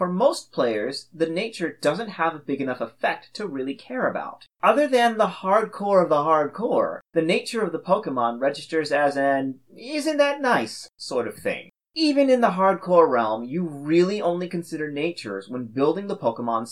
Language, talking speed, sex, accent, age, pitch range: English, 180 wpm, male, American, 30-49, 135-210 Hz